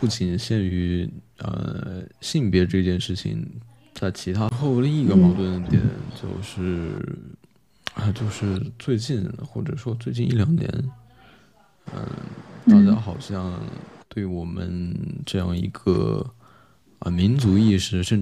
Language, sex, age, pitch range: Chinese, male, 20-39, 90-120 Hz